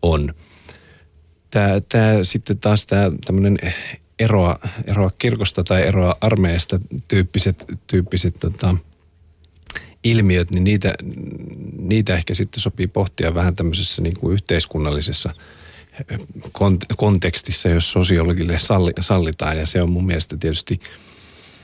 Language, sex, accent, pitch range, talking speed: Finnish, male, native, 80-95 Hz, 105 wpm